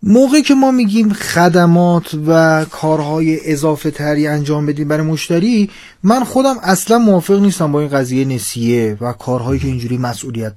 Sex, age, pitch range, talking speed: male, 30-49, 145-220 Hz, 150 wpm